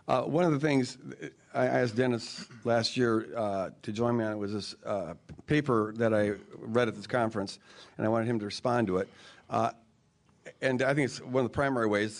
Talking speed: 215 wpm